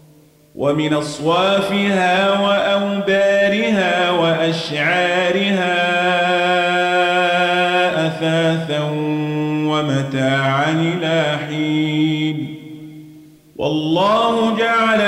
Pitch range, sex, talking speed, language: 155-220 Hz, male, 40 wpm, Arabic